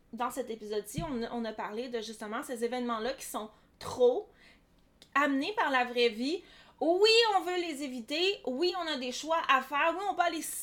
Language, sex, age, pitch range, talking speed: French, female, 30-49, 235-315 Hz, 190 wpm